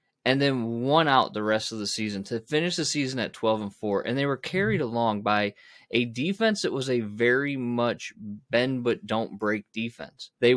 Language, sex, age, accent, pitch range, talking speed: English, male, 20-39, American, 110-145 Hz, 205 wpm